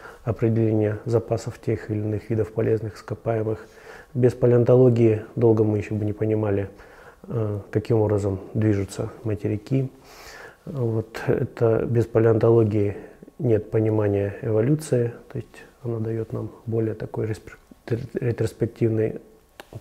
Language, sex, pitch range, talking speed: Russian, male, 110-125 Hz, 105 wpm